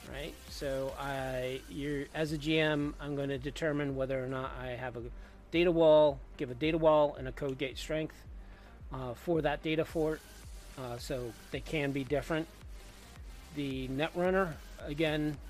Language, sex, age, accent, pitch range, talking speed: English, male, 40-59, American, 125-155 Hz, 165 wpm